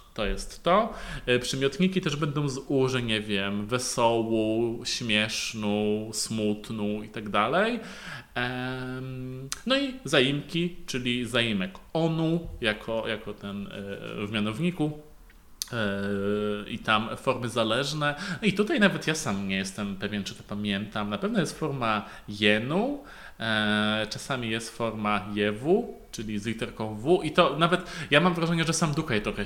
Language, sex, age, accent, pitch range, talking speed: Polish, male, 20-39, native, 105-150 Hz, 130 wpm